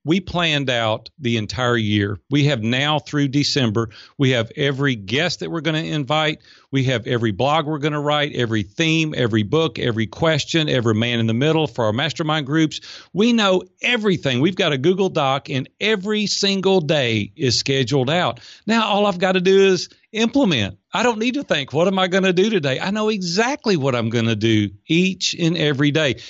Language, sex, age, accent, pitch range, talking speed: English, male, 40-59, American, 125-185 Hz, 205 wpm